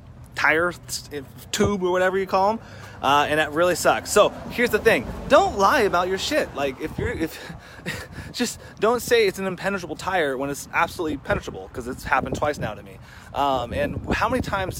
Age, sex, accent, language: 30-49, male, American, English